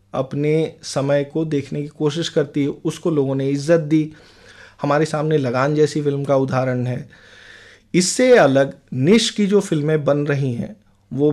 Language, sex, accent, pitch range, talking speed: Hindi, male, native, 135-170 Hz, 165 wpm